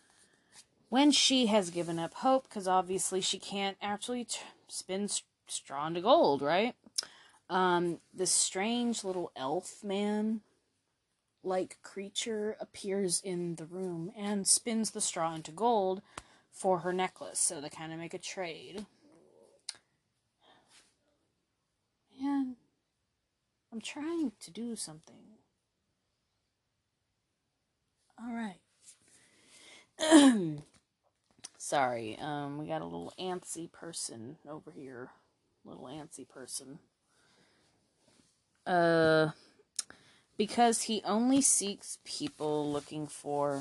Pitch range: 150-215 Hz